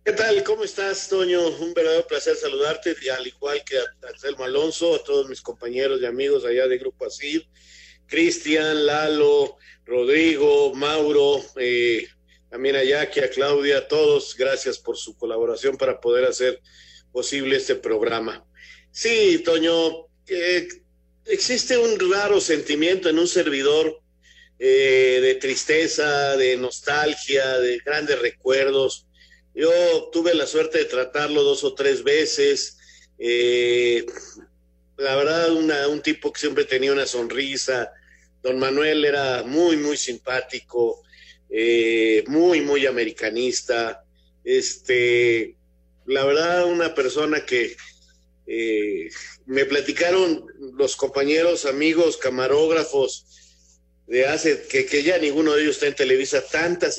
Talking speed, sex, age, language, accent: 125 wpm, male, 50-69, Spanish, Mexican